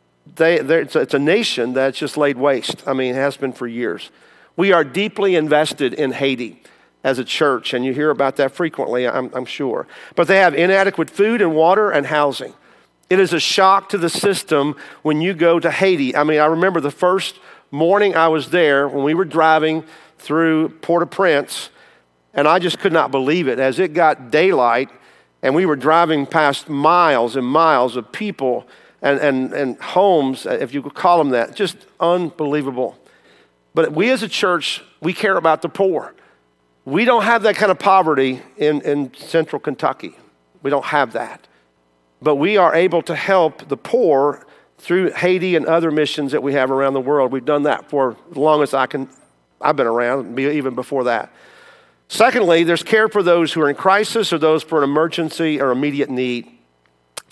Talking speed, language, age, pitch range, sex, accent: 190 wpm, English, 50-69, 135-175 Hz, male, American